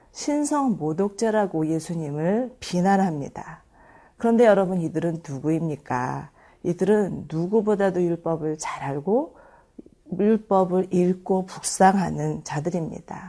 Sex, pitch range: female, 165-220 Hz